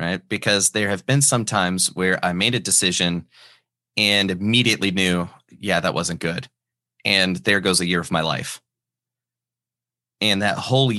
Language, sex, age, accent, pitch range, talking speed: English, male, 30-49, American, 90-115 Hz, 165 wpm